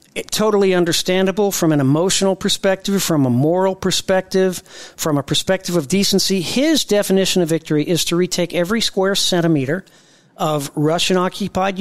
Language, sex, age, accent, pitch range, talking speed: English, male, 40-59, American, 165-195 Hz, 135 wpm